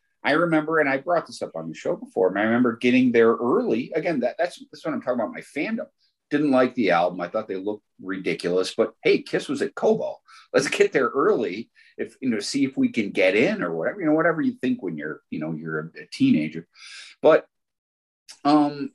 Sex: male